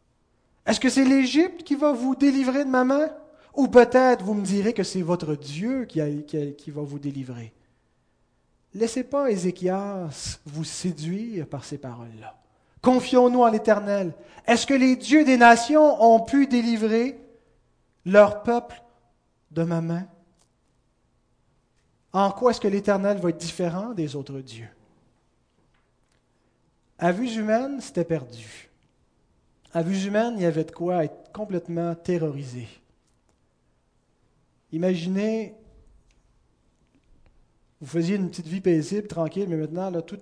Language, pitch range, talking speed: French, 155-215 Hz, 135 wpm